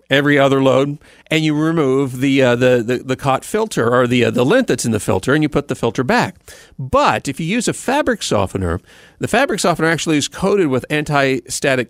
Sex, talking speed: male, 215 wpm